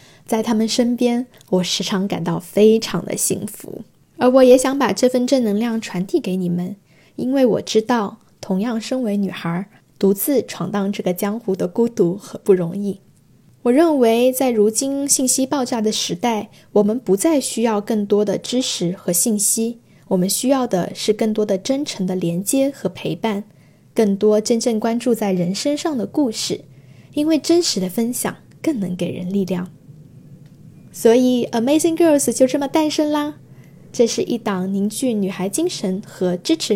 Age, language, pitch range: 10-29, Chinese, 190-245 Hz